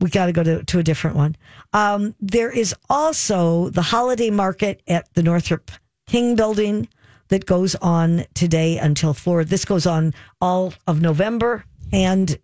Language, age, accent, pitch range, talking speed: English, 50-69, American, 150-195 Hz, 165 wpm